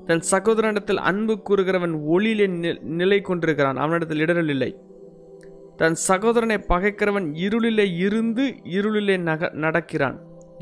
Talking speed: 105 wpm